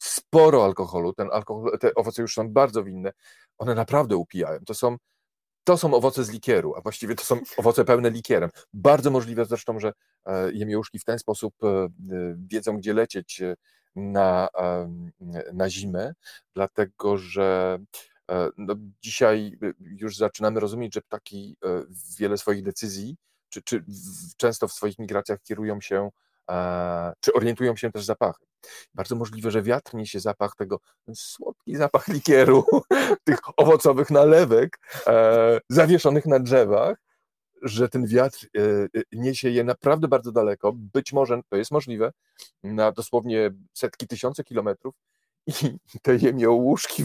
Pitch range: 100-125 Hz